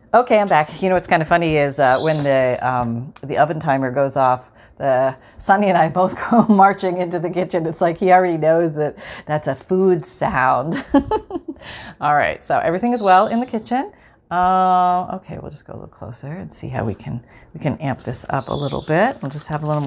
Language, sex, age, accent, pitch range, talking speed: English, female, 40-59, American, 145-200 Hz, 225 wpm